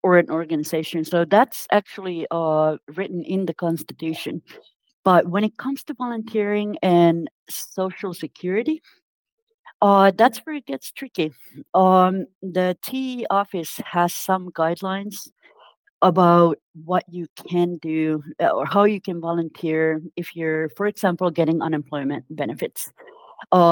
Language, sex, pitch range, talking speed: Finnish, female, 160-205 Hz, 130 wpm